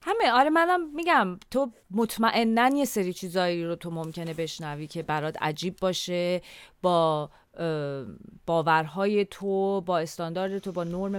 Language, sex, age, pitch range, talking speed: Persian, female, 30-49, 165-220 Hz, 140 wpm